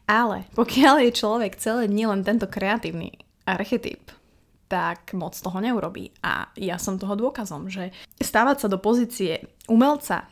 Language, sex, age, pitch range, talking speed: Slovak, female, 20-39, 190-225 Hz, 145 wpm